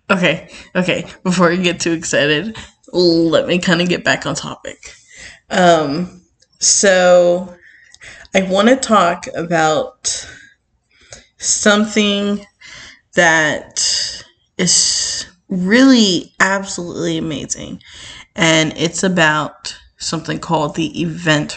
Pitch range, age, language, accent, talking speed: 160-195 Hz, 20-39, English, American, 95 wpm